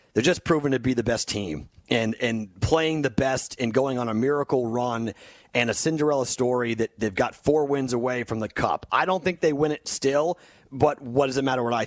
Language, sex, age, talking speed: English, male, 30-49, 235 wpm